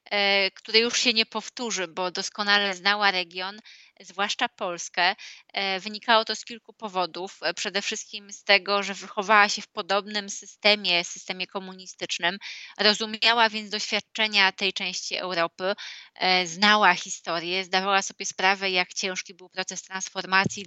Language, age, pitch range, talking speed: Polish, 20-39, 180-210 Hz, 130 wpm